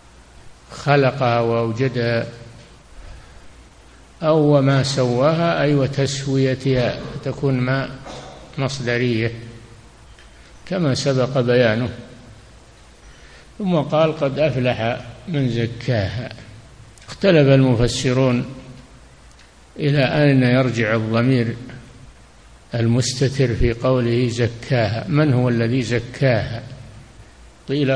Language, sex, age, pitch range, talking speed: Arabic, male, 60-79, 110-135 Hz, 75 wpm